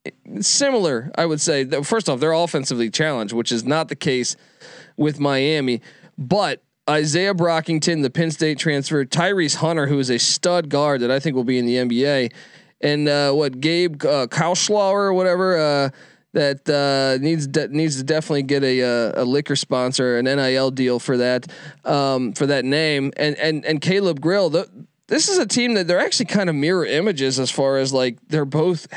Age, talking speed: 20-39, 195 wpm